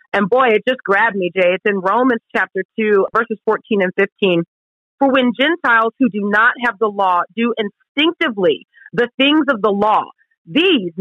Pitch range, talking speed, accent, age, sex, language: 200-270 Hz, 180 wpm, American, 40-59, female, English